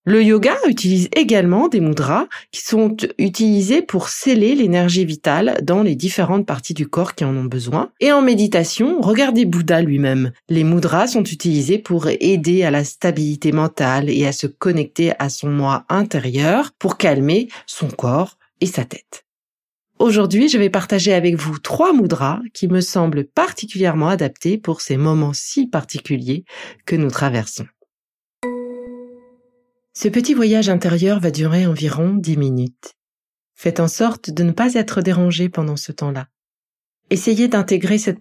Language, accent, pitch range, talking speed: French, French, 155-215 Hz, 155 wpm